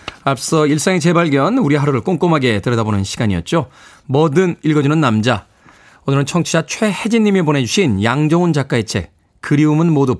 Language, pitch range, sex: Korean, 115-160 Hz, male